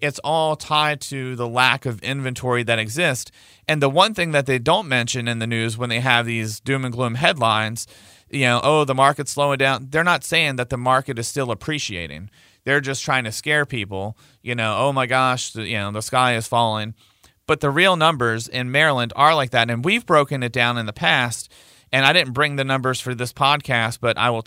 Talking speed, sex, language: 225 wpm, male, English